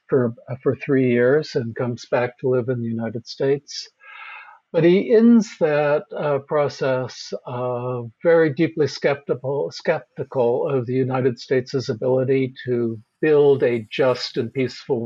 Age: 60-79